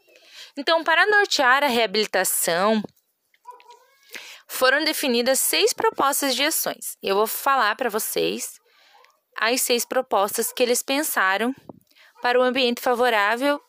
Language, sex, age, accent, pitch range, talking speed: Portuguese, female, 20-39, Brazilian, 220-285 Hz, 120 wpm